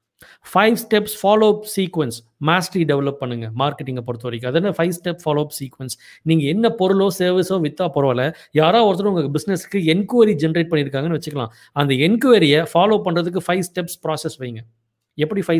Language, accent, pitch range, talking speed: Tamil, native, 140-185 Hz, 140 wpm